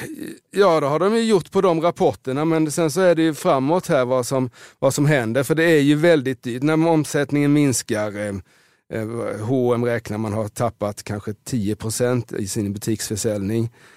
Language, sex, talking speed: Swedish, male, 170 wpm